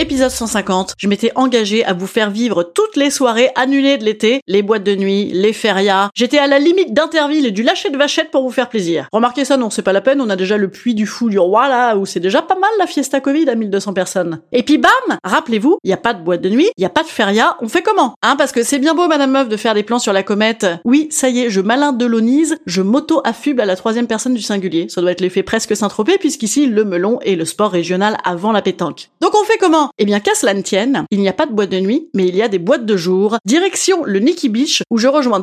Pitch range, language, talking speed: 205-300 Hz, French, 280 wpm